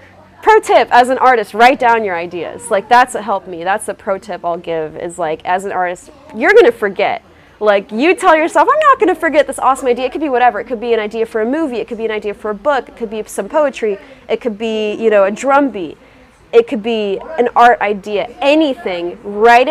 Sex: female